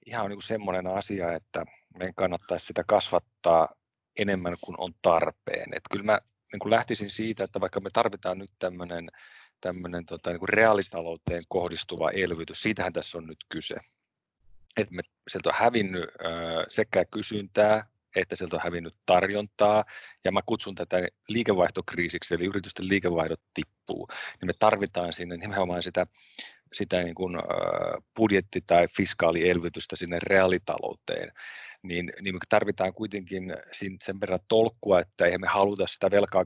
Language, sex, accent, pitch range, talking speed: Finnish, male, native, 90-105 Hz, 140 wpm